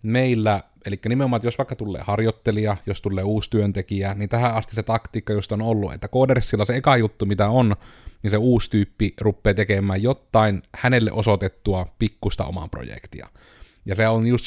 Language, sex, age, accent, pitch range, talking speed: Finnish, male, 30-49, native, 100-120 Hz, 175 wpm